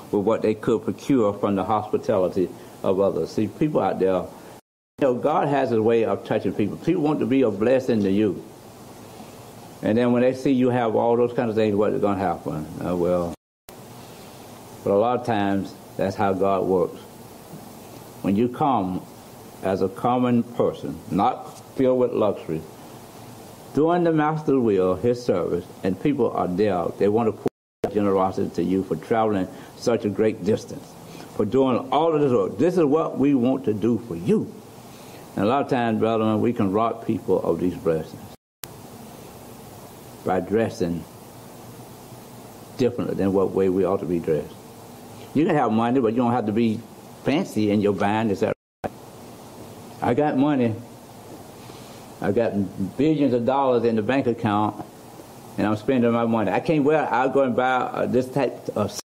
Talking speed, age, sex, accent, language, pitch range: 180 wpm, 60-79, male, American, English, 100-125 Hz